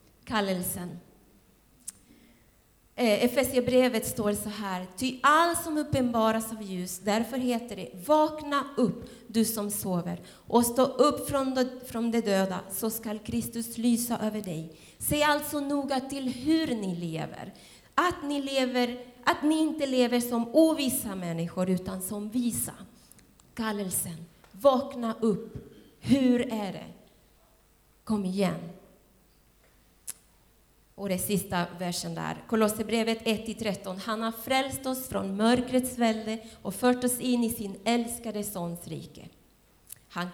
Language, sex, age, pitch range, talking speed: Swedish, female, 30-49, 205-260 Hz, 130 wpm